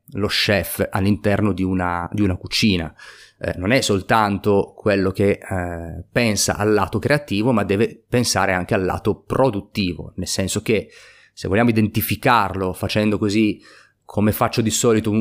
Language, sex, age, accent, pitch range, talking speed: Italian, male, 30-49, native, 95-115 Hz, 150 wpm